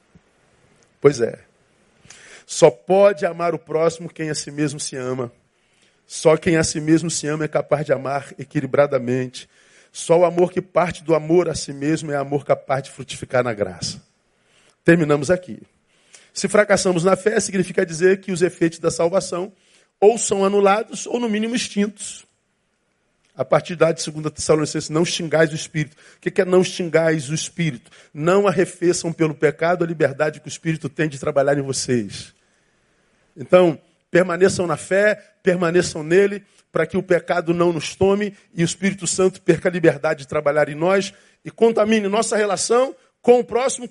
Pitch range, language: 155-195 Hz, Portuguese